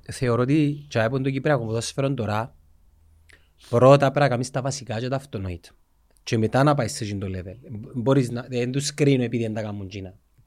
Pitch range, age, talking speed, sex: 115-175 Hz, 30-49, 150 wpm, male